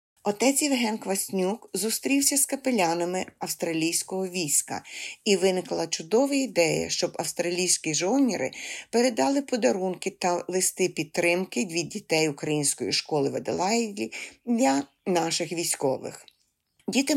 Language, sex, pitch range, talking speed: Ukrainian, female, 155-215 Hz, 100 wpm